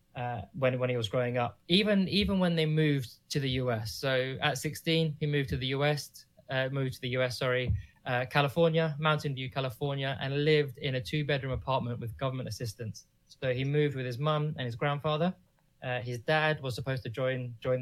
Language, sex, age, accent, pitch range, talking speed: English, male, 20-39, British, 125-145 Hz, 200 wpm